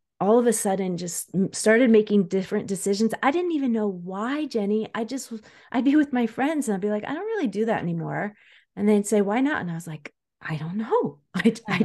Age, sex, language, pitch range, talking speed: 30-49, female, English, 175-225 Hz, 235 wpm